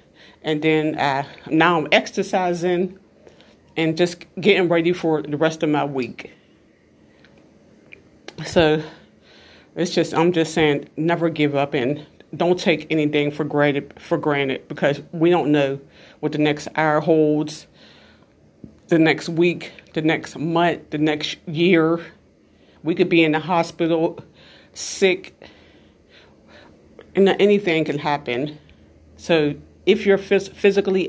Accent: American